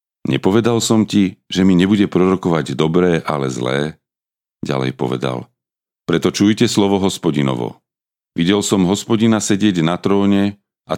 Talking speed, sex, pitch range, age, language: 125 wpm, male, 75-100 Hz, 40-59, Slovak